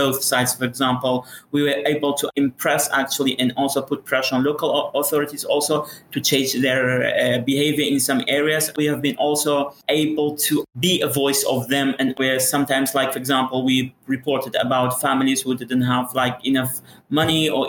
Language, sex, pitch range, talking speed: English, male, 130-145 Hz, 185 wpm